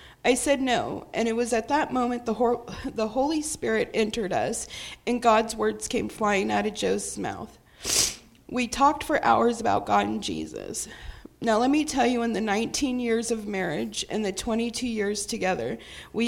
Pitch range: 210-245 Hz